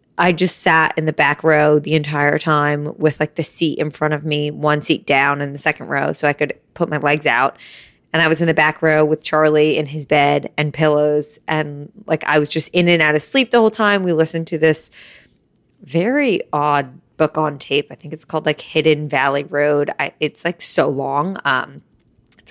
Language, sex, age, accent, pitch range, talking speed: English, female, 20-39, American, 150-185 Hz, 220 wpm